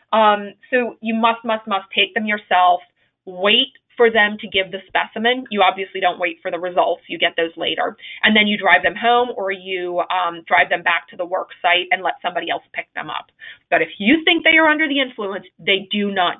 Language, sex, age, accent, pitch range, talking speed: English, female, 30-49, American, 195-260 Hz, 225 wpm